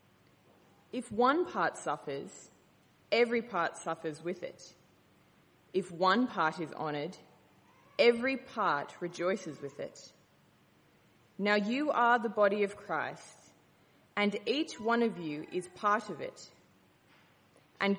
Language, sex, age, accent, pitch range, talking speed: English, female, 20-39, Australian, 175-255 Hz, 120 wpm